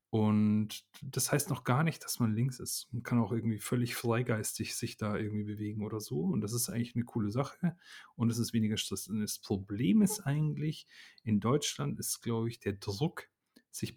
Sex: male